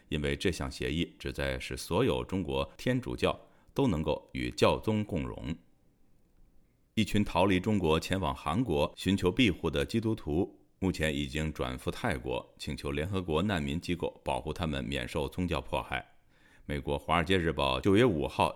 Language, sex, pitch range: Chinese, male, 70-95 Hz